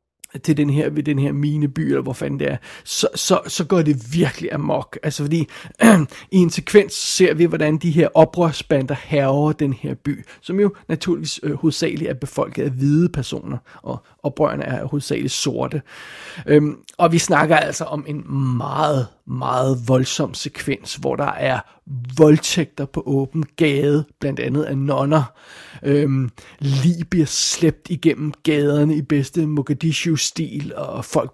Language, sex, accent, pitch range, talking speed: Danish, male, native, 140-165 Hz, 155 wpm